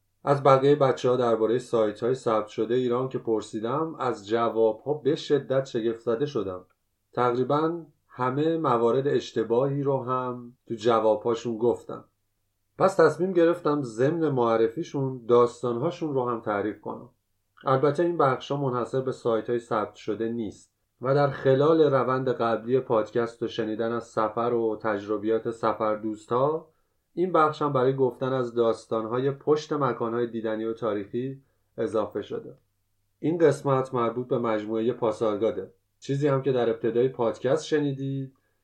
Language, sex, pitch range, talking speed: Persian, male, 110-135 Hz, 135 wpm